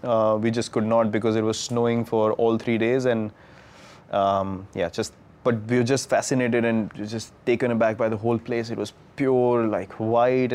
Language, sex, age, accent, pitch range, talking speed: English, male, 20-39, Indian, 110-125 Hz, 200 wpm